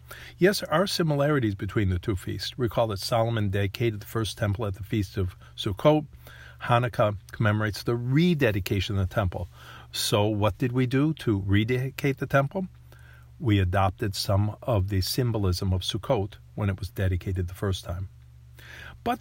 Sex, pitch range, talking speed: male, 95-125 Hz, 160 wpm